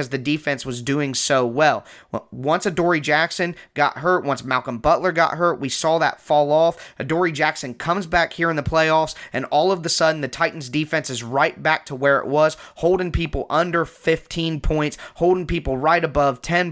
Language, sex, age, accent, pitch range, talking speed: English, male, 20-39, American, 135-160 Hz, 195 wpm